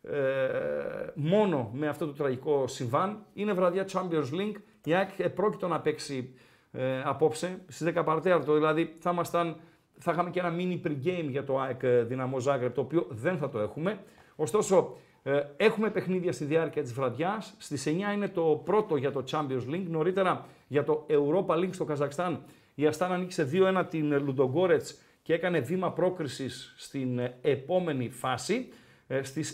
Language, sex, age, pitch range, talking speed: Greek, male, 50-69, 145-185 Hz, 160 wpm